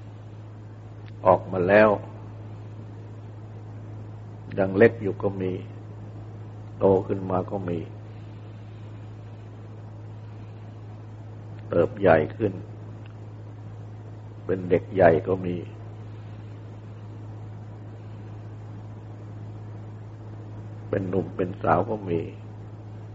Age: 60-79